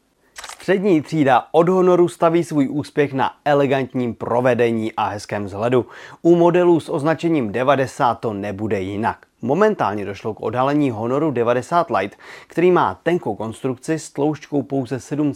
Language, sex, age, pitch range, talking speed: Czech, male, 30-49, 120-160 Hz, 135 wpm